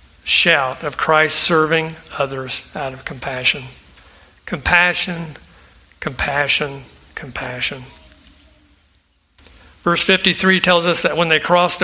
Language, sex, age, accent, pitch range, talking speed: English, male, 60-79, American, 130-165 Hz, 95 wpm